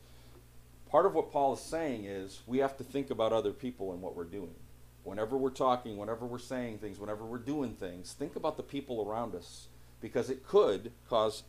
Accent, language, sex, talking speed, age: American, English, male, 205 wpm, 40-59